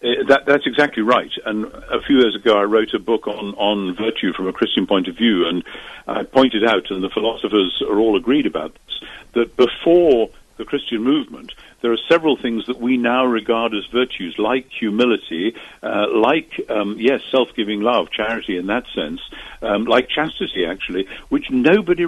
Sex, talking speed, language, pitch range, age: male, 180 wpm, English, 115-170 Hz, 50-69